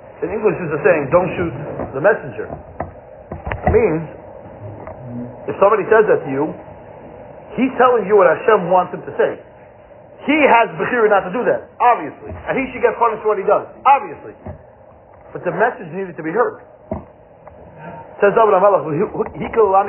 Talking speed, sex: 160 wpm, male